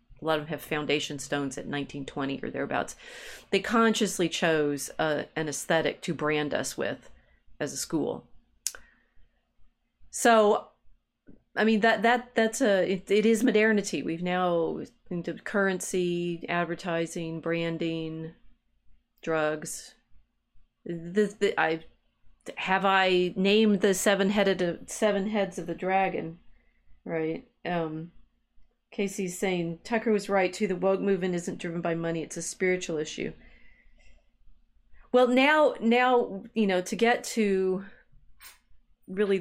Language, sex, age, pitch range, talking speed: English, female, 40-59, 160-200 Hz, 125 wpm